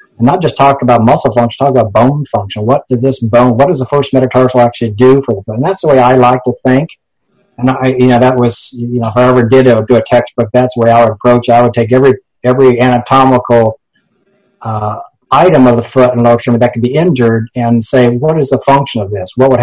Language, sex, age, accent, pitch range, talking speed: English, male, 50-69, American, 120-135 Hz, 260 wpm